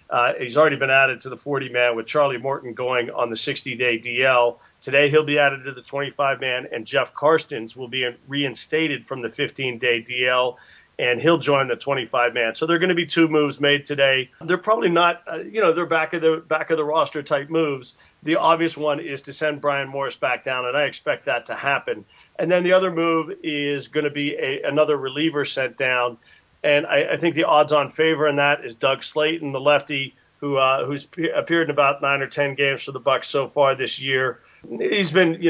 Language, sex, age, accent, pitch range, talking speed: English, male, 40-59, American, 135-155 Hz, 205 wpm